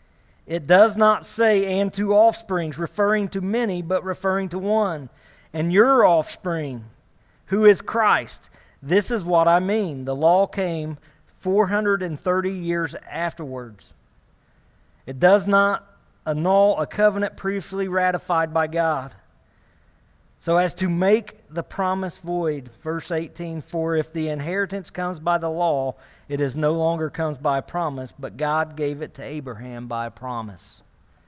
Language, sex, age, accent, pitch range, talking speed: English, male, 40-59, American, 145-185 Hz, 140 wpm